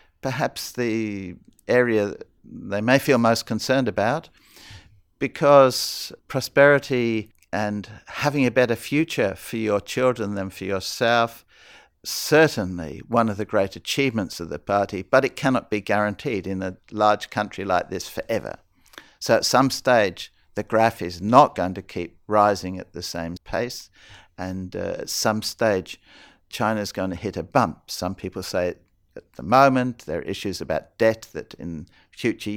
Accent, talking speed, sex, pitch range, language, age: Australian, 155 wpm, male, 95-125 Hz, English, 50-69